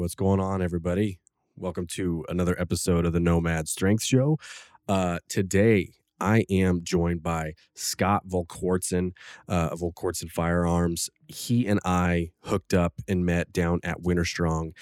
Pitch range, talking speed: 85-95 Hz, 145 wpm